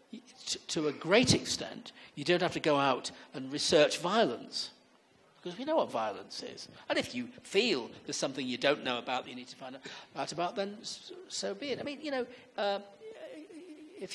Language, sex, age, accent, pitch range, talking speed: English, male, 50-69, British, 145-220 Hz, 195 wpm